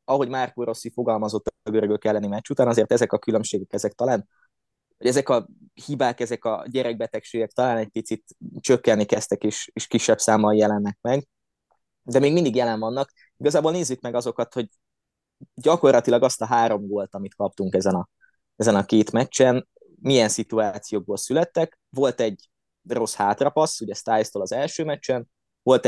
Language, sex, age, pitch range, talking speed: Hungarian, male, 20-39, 105-135 Hz, 160 wpm